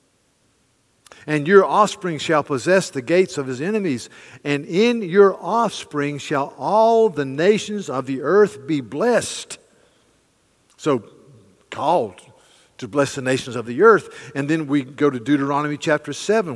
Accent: American